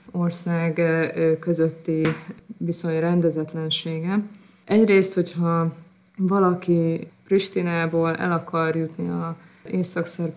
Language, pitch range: Hungarian, 165-180 Hz